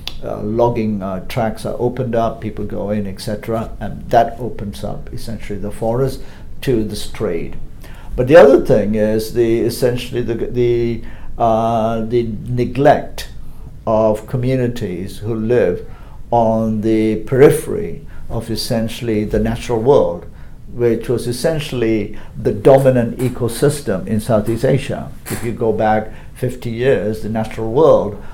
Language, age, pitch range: English, 50-69, 110-130 Hz